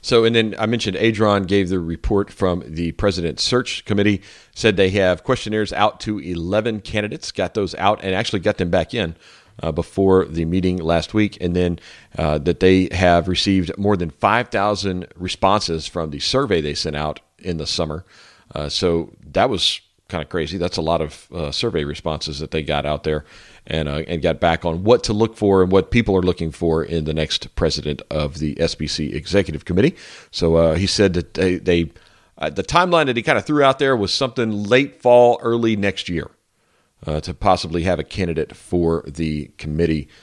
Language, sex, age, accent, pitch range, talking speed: English, male, 40-59, American, 80-105 Hz, 200 wpm